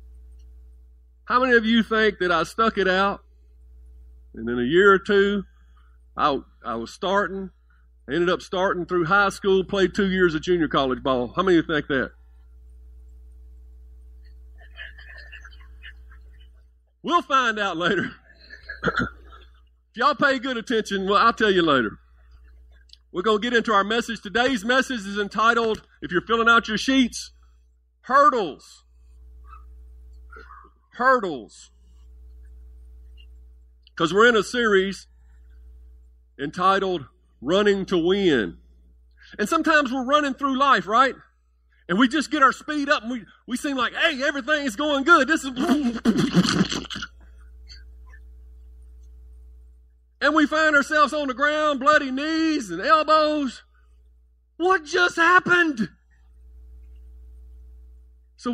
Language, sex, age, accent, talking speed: English, male, 50-69, American, 125 wpm